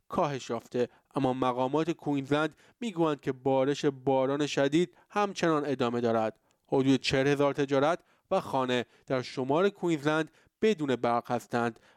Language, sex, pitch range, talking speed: Persian, male, 130-160 Hz, 125 wpm